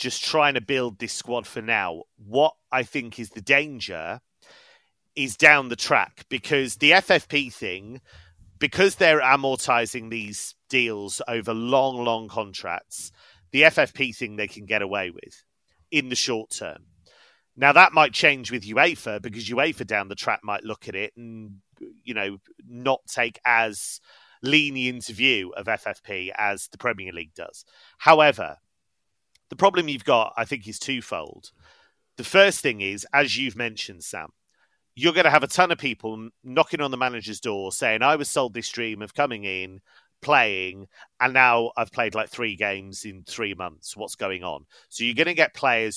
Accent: British